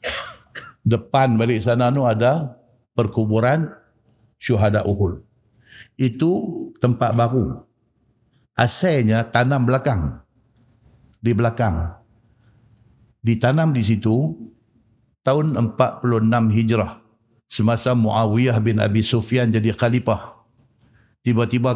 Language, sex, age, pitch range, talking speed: Malay, male, 50-69, 110-125 Hz, 85 wpm